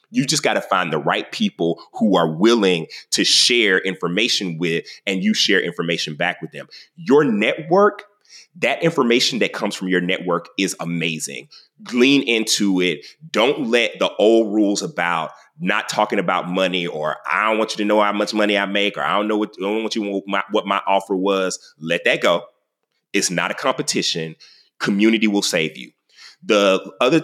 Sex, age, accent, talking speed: male, 30-49, American, 190 wpm